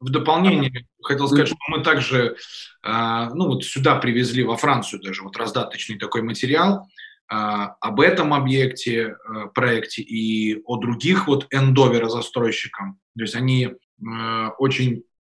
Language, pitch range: Russian, 115-140 Hz